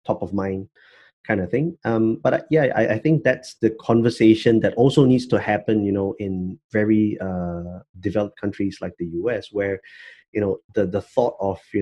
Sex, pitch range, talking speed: male, 100-135 Hz, 200 wpm